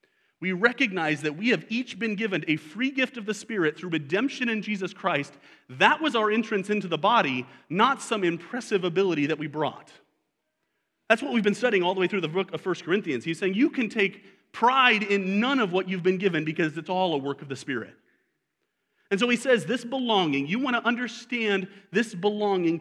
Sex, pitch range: male, 170-230 Hz